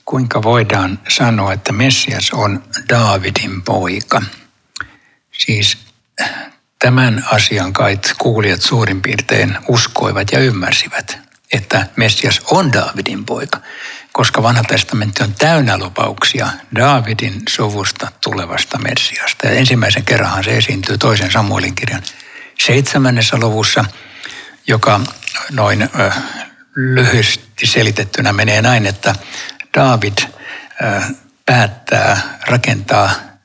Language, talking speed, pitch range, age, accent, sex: Finnish, 95 wpm, 105-130 Hz, 60-79, native, male